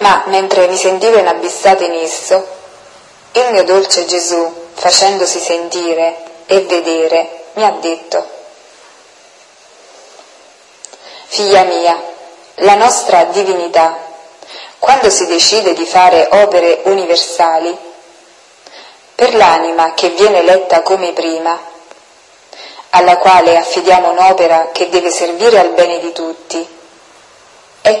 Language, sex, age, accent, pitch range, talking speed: Italian, female, 30-49, native, 165-190 Hz, 105 wpm